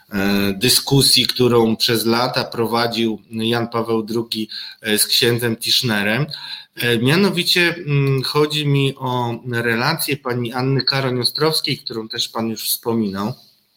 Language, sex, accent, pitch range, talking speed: Polish, male, native, 115-140 Hz, 105 wpm